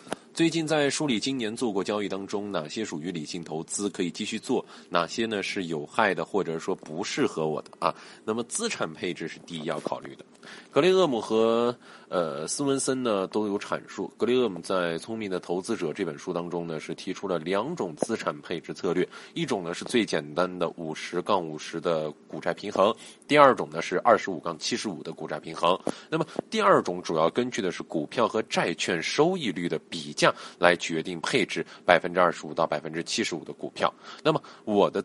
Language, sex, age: Chinese, male, 20-39